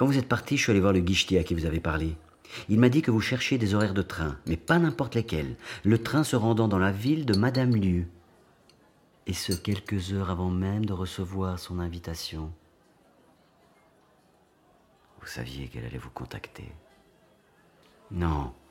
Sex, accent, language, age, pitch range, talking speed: male, French, French, 40-59, 85-120 Hz, 180 wpm